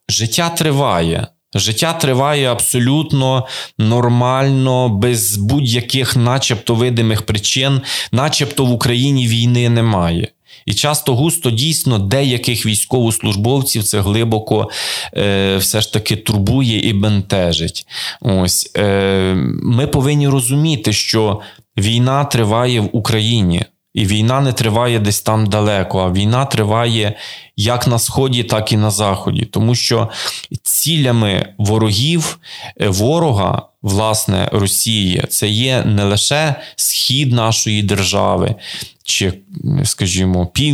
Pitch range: 105-125 Hz